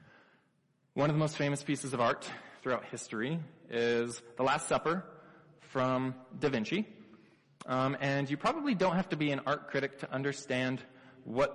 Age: 20-39